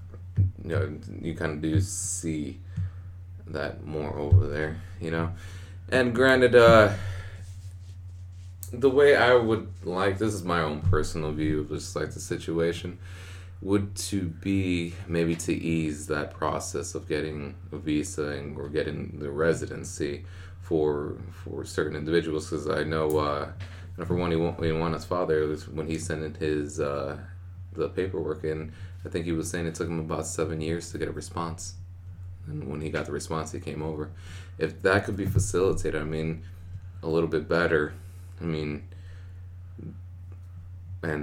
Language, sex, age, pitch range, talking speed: English, male, 20-39, 80-95 Hz, 165 wpm